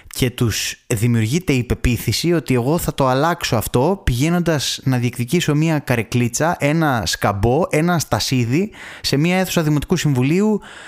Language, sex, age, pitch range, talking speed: Greek, male, 20-39, 110-155 Hz, 140 wpm